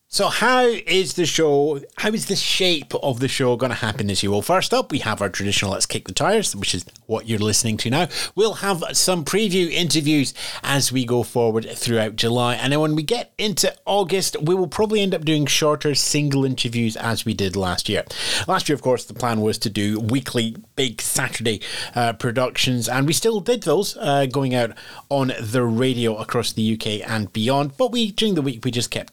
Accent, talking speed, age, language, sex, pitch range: British, 215 wpm, 30-49, English, male, 110-155 Hz